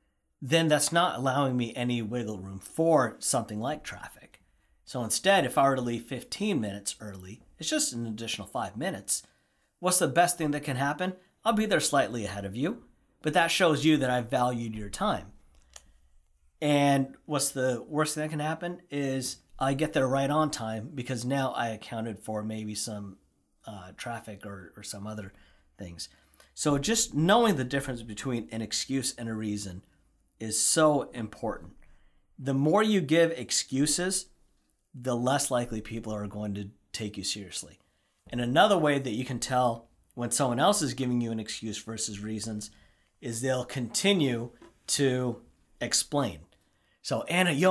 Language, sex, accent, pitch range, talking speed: English, male, American, 110-155 Hz, 170 wpm